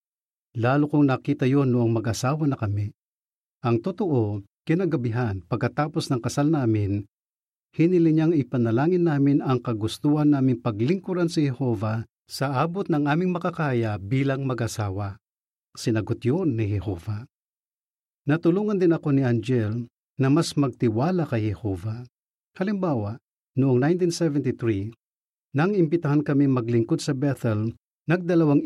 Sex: male